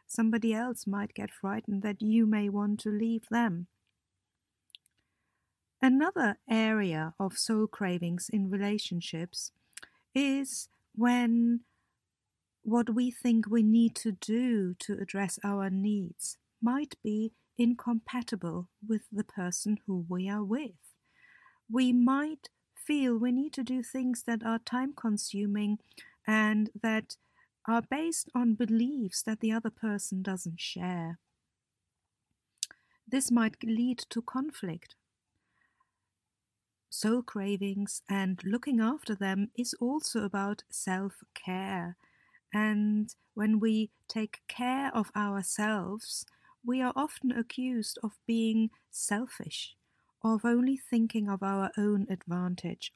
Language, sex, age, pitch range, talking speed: English, female, 50-69, 195-235 Hz, 115 wpm